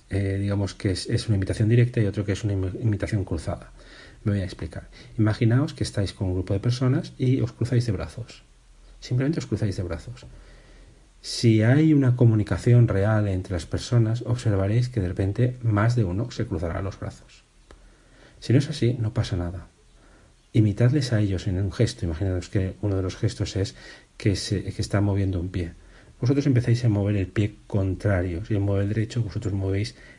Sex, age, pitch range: male, 40-59, 95-115 Hz